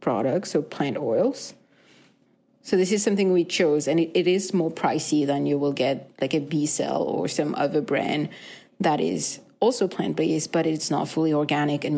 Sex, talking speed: female, 185 wpm